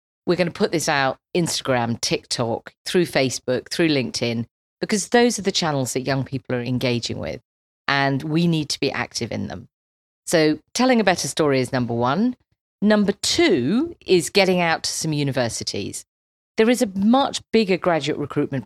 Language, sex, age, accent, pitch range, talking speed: English, female, 40-59, British, 130-185 Hz, 175 wpm